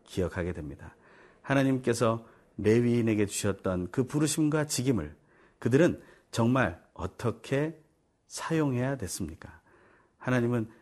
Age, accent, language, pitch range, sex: 40-59, native, Korean, 95-145 Hz, male